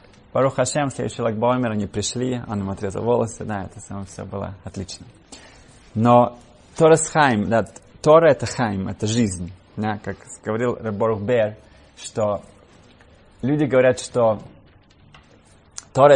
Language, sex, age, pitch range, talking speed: Russian, male, 20-39, 100-125 Hz, 130 wpm